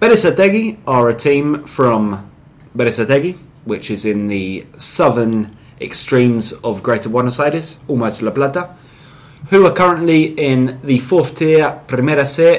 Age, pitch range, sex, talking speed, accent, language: 20-39, 110-145 Hz, male, 135 wpm, British, English